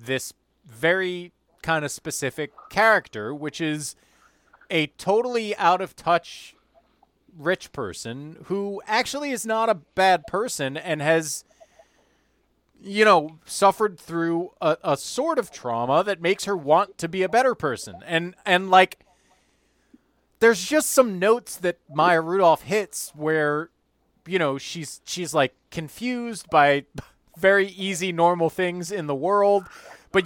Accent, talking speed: American, 140 wpm